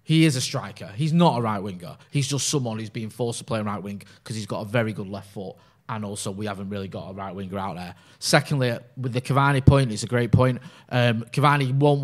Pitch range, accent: 110-150 Hz, British